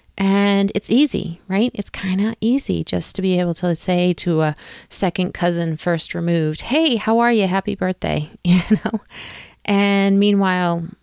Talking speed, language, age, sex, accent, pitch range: 165 wpm, English, 30-49, female, American, 170-230 Hz